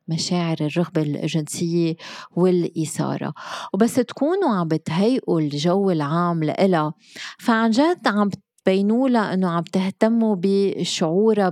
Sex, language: female, Arabic